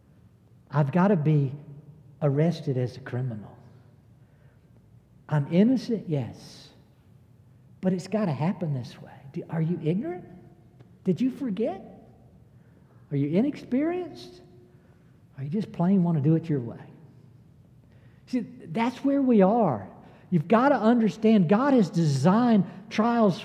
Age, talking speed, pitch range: 60-79, 135 wpm, 135-205 Hz